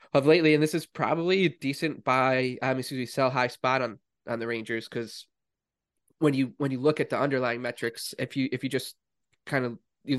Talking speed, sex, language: 220 wpm, male, English